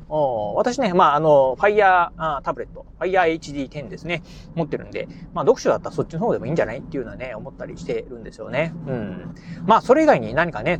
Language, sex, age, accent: Japanese, male, 30-49, native